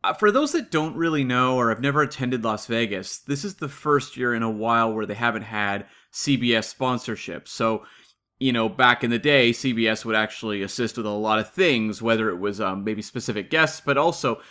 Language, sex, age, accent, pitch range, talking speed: English, male, 30-49, American, 110-145 Hz, 215 wpm